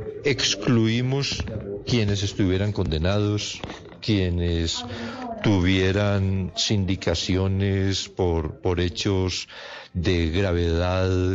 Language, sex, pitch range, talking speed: Spanish, male, 95-120 Hz, 65 wpm